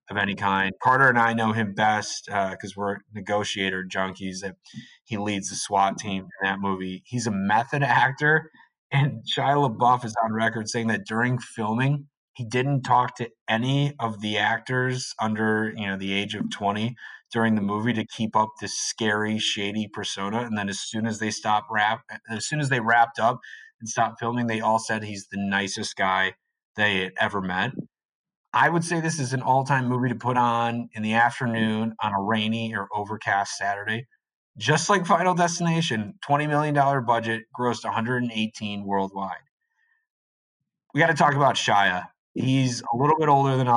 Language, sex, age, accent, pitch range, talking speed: English, male, 30-49, American, 105-125 Hz, 180 wpm